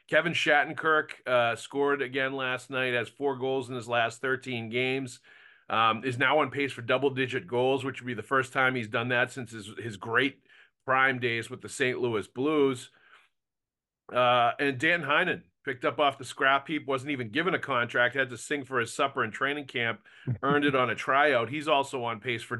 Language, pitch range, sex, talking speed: English, 115-140 Hz, male, 205 wpm